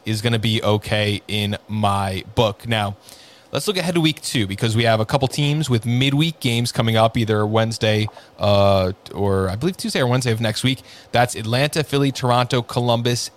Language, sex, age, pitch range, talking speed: English, male, 20-39, 110-140 Hz, 195 wpm